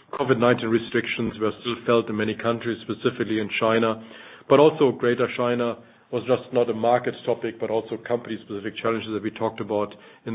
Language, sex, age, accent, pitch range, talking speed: English, male, 40-59, German, 105-120 Hz, 175 wpm